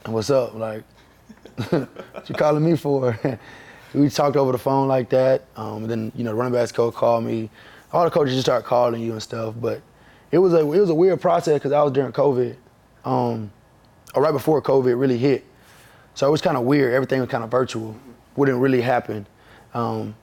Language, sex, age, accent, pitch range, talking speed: English, male, 20-39, American, 115-135 Hz, 215 wpm